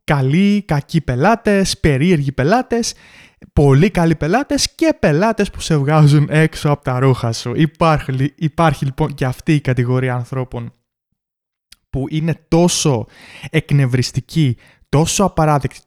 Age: 20-39